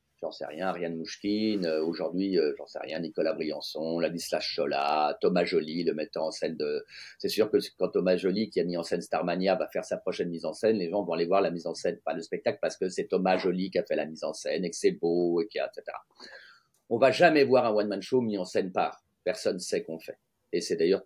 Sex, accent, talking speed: male, French, 255 wpm